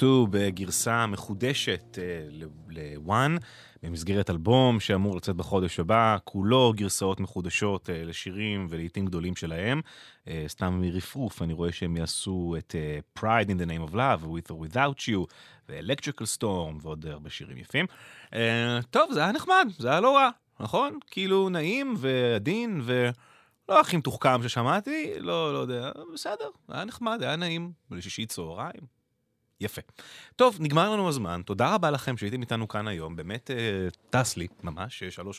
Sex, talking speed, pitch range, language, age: male, 110 wpm, 90-125 Hz, English, 30-49